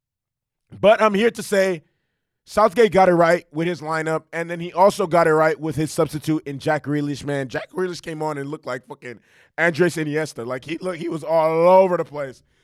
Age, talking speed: 20-39, 215 wpm